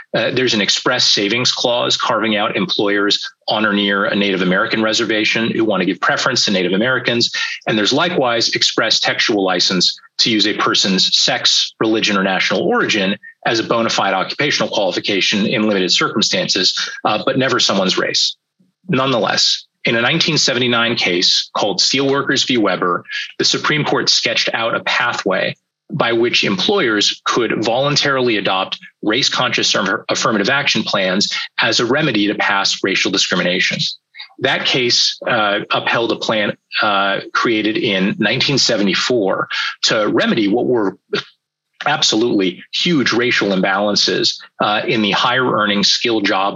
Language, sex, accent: English, male, American